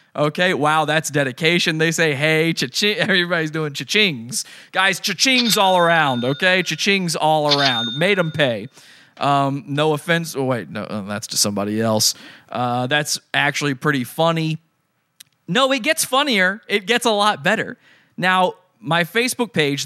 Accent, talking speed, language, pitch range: American, 150 wpm, English, 135-185 Hz